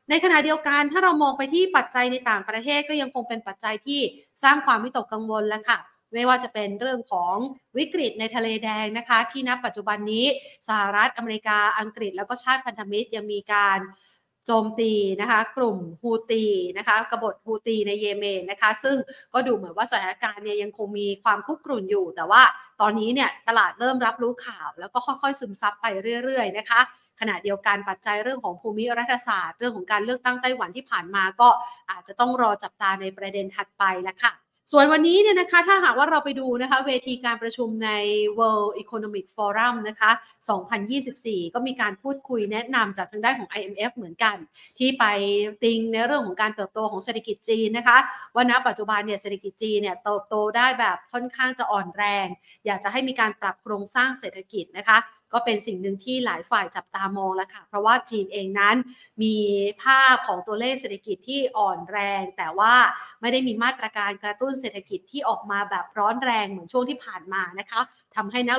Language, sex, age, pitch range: Thai, female, 30-49, 205-250 Hz